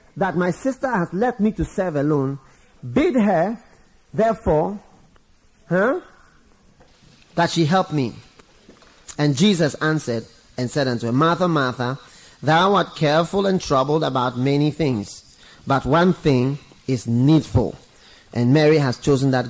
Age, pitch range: 30-49, 130-205 Hz